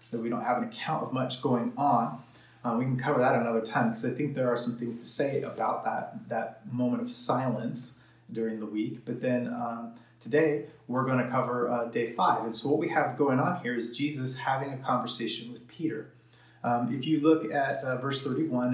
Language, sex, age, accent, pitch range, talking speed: English, male, 30-49, American, 120-145 Hz, 220 wpm